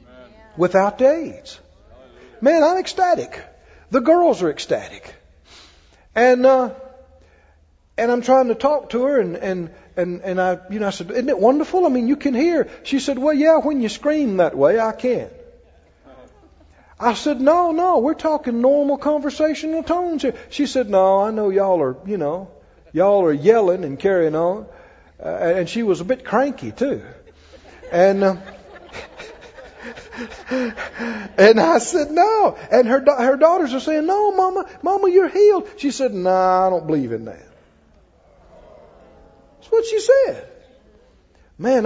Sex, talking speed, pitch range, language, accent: male, 160 wpm, 185-295 Hz, English, American